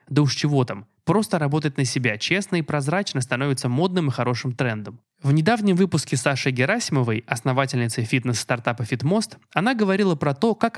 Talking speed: 160 wpm